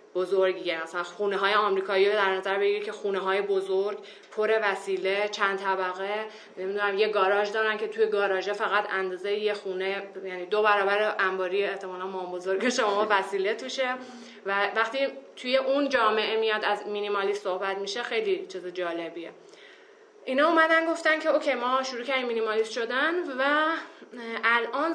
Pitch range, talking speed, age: 195-225 Hz, 145 wpm, 30-49